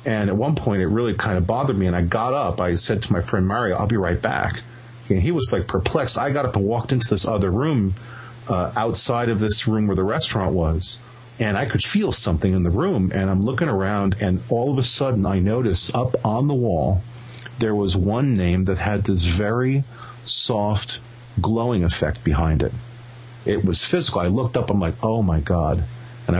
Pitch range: 95-120 Hz